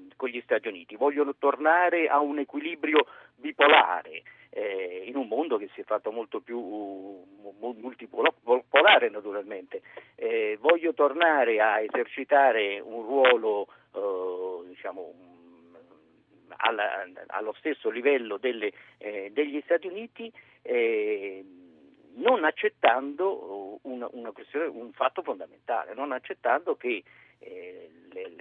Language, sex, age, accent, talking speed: Italian, male, 50-69, native, 110 wpm